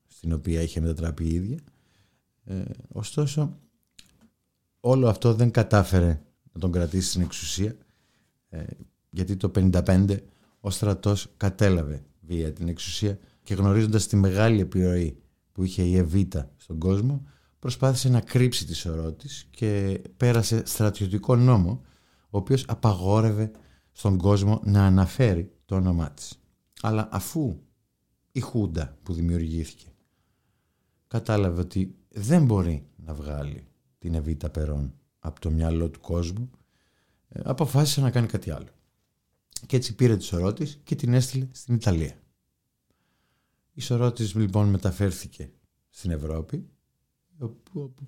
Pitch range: 85-115 Hz